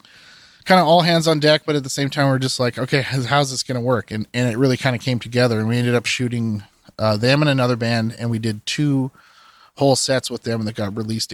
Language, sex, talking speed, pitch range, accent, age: English, male, 260 wpm, 110-130 Hz, American, 30-49